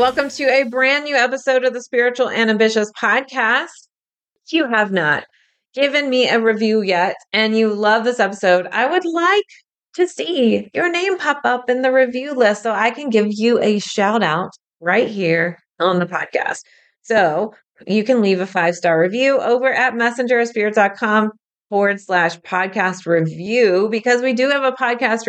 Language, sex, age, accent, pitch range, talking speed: English, female, 30-49, American, 180-250 Hz, 170 wpm